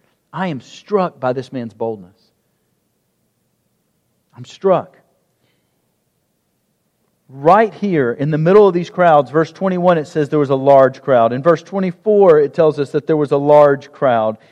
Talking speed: 155 wpm